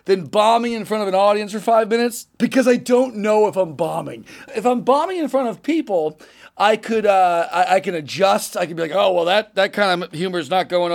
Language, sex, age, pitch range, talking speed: English, male, 40-59, 180-230 Hz, 245 wpm